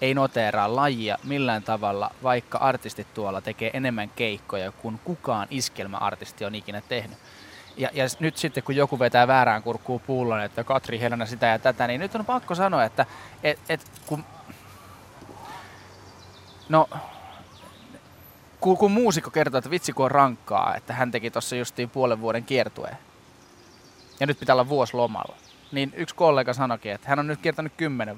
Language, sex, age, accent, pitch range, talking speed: Finnish, male, 20-39, native, 115-145 Hz, 160 wpm